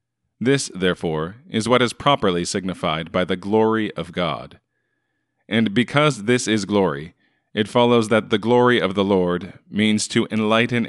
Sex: male